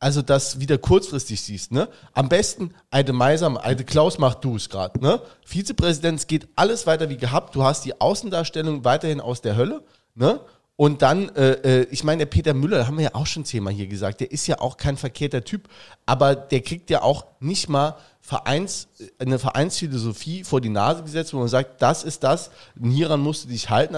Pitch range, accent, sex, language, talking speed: 130-155 Hz, German, male, German, 210 wpm